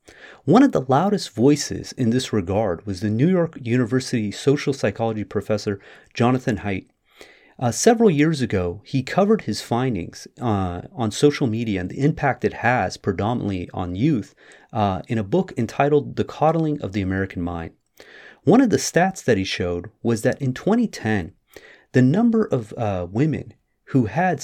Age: 30-49